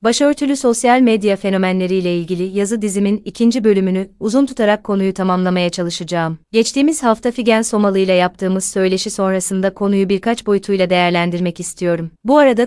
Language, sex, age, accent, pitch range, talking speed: Turkish, female, 30-49, native, 185-215 Hz, 135 wpm